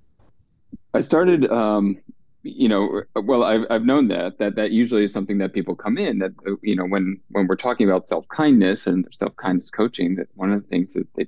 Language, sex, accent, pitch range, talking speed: English, male, American, 90-105 Hz, 200 wpm